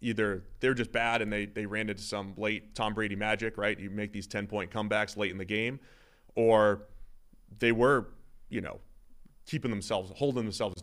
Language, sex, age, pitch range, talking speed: English, male, 30-49, 95-120 Hz, 185 wpm